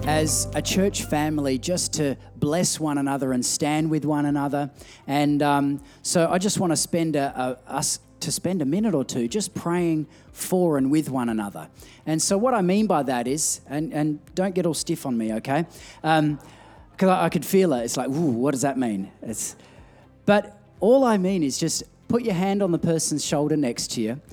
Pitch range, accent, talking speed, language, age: 135-195 Hz, Australian, 210 wpm, English, 30-49